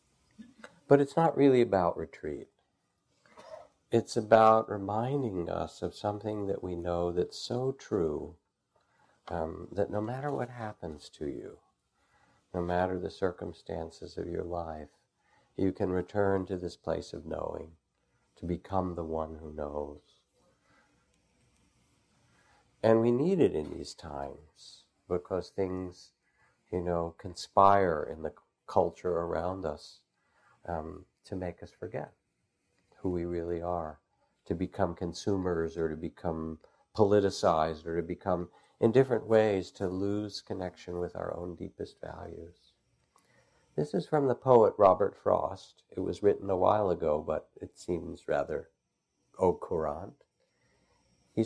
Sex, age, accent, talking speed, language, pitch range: male, 60-79, American, 135 wpm, English, 85-110 Hz